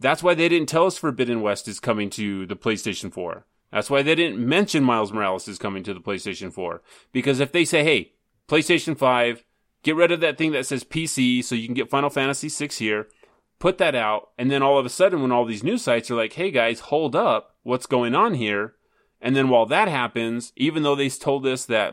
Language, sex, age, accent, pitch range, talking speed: English, male, 30-49, American, 110-145 Hz, 235 wpm